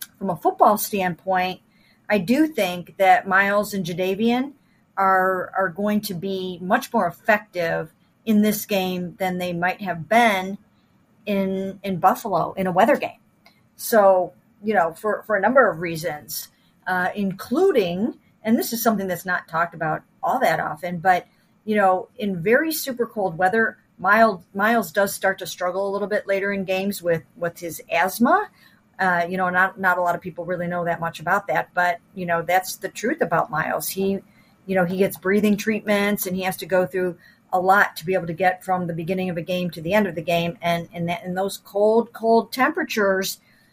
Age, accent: 50-69, American